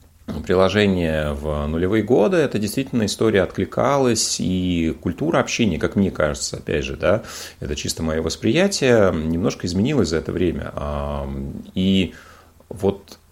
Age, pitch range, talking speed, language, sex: 30-49, 80-95 Hz, 125 wpm, Russian, male